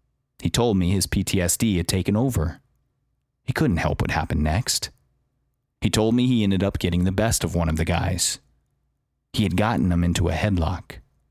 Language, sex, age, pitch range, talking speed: English, male, 30-49, 85-115 Hz, 185 wpm